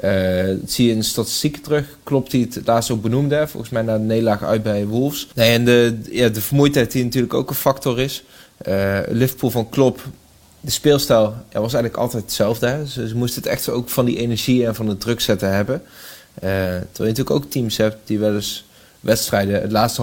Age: 20-39